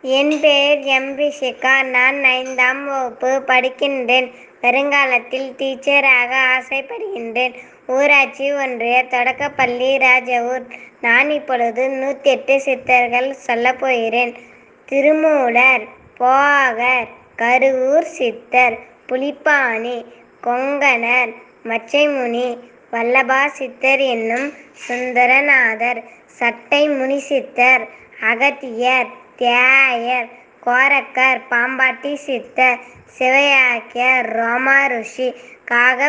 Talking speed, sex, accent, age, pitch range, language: 70 wpm, male, native, 20-39, 245-270 Hz, Tamil